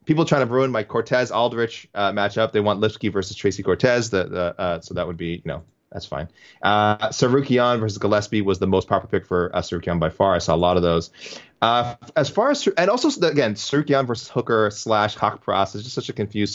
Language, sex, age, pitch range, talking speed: English, male, 20-39, 95-115 Hz, 230 wpm